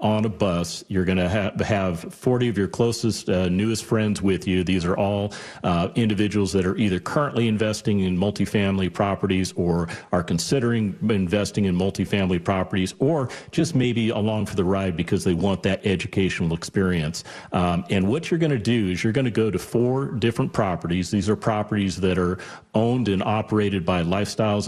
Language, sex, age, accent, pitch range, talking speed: English, male, 40-59, American, 95-115 Hz, 180 wpm